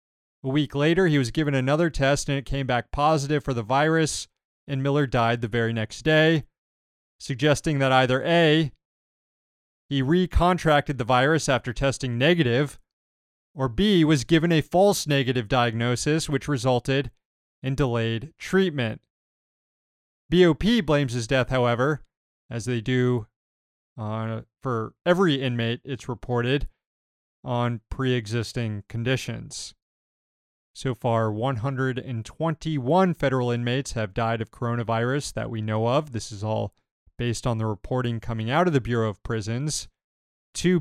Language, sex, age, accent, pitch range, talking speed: English, male, 30-49, American, 115-150 Hz, 135 wpm